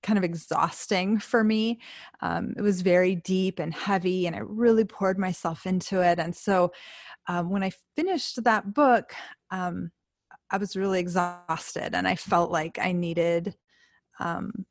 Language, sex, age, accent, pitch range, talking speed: English, female, 30-49, American, 175-225 Hz, 165 wpm